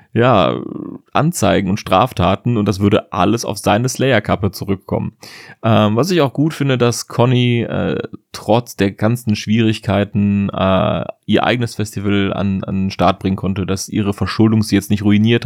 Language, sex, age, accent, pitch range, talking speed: German, male, 30-49, German, 95-110 Hz, 165 wpm